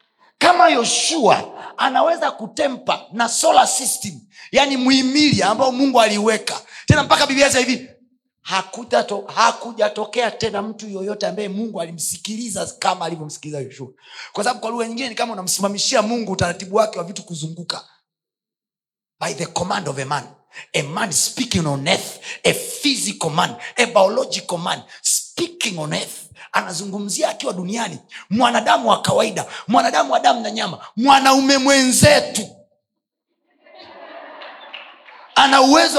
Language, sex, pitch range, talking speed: Swahili, male, 205-285 Hz, 125 wpm